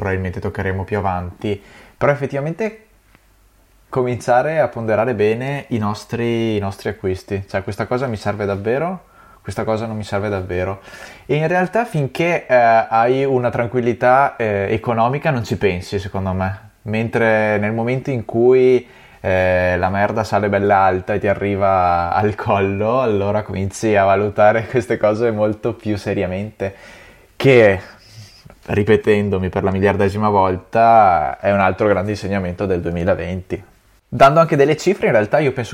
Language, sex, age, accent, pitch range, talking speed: Italian, male, 20-39, native, 95-120 Hz, 145 wpm